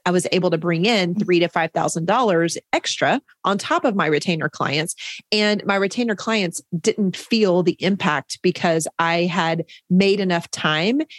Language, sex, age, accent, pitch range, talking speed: English, female, 30-49, American, 170-210 Hz, 170 wpm